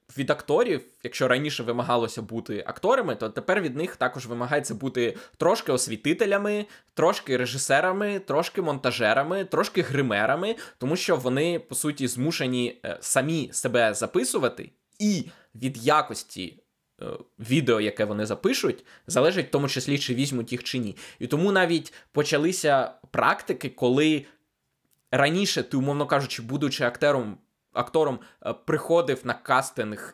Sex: male